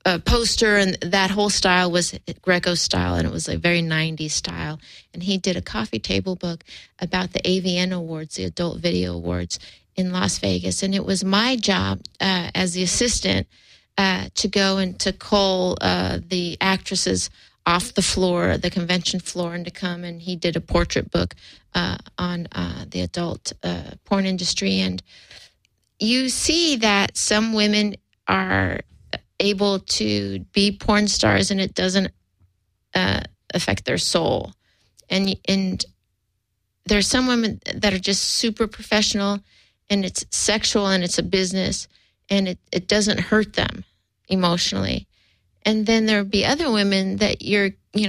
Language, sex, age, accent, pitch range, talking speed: English, female, 40-59, American, 155-200 Hz, 160 wpm